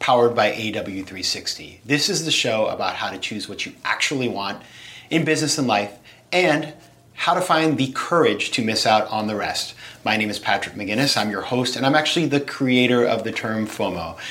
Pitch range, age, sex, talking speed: 100-135 Hz, 30-49, male, 200 wpm